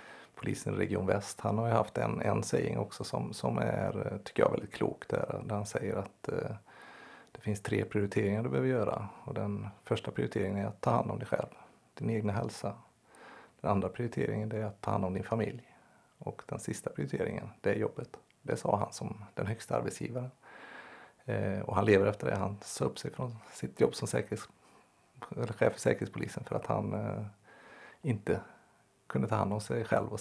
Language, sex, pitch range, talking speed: Swedish, male, 95-120 Hz, 200 wpm